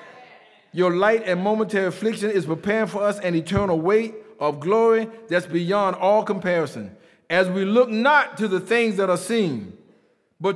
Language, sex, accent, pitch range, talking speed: English, male, American, 190-255 Hz, 165 wpm